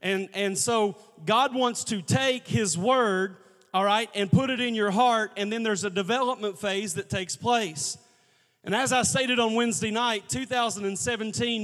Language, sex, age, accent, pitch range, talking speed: English, male, 30-49, American, 195-220 Hz, 175 wpm